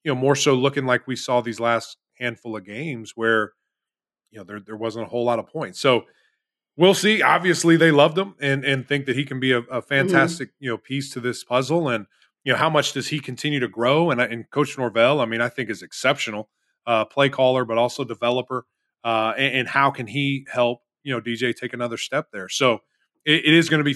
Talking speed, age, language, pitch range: 235 wpm, 20-39, English, 115-135 Hz